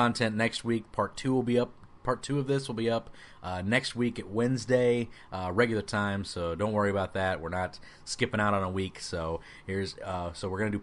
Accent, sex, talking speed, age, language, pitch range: American, male, 235 wpm, 30-49, English, 95-125 Hz